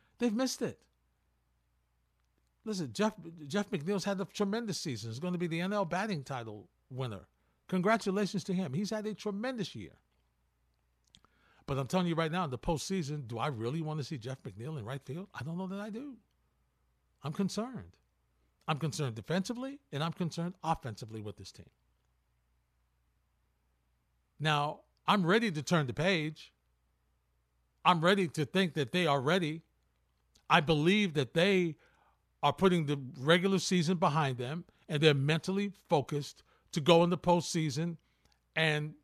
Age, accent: 50-69, American